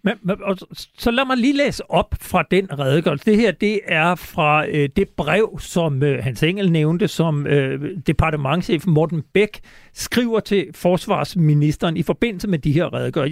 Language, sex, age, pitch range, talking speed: Danish, male, 60-79, 155-205 Hz, 170 wpm